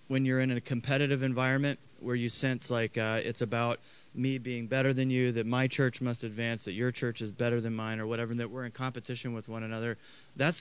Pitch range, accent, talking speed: 115-135 Hz, American, 230 wpm